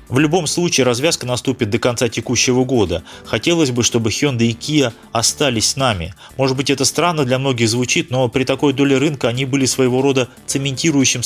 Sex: male